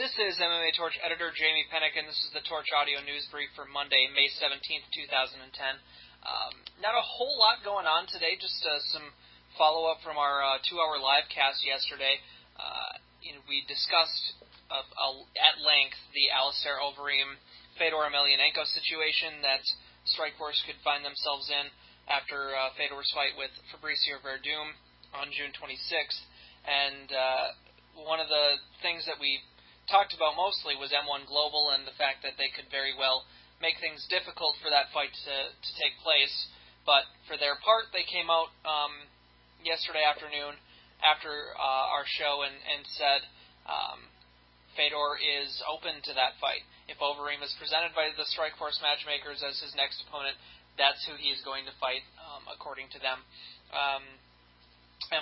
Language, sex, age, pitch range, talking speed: English, male, 20-39, 135-155 Hz, 160 wpm